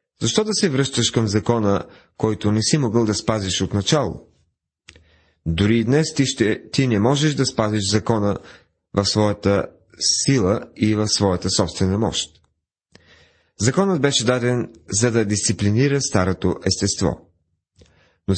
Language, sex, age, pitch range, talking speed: Bulgarian, male, 30-49, 95-135 Hz, 135 wpm